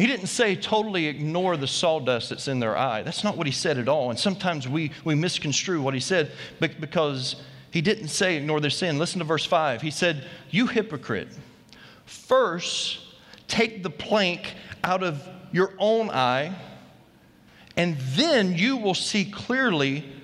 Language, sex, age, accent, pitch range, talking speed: English, male, 40-59, American, 150-215 Hz, 165 wpm